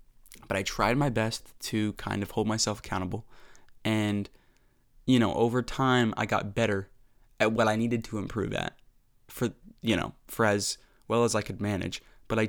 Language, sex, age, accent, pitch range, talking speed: English, male, 20-39, American, 105-120 Hz, 185 wpm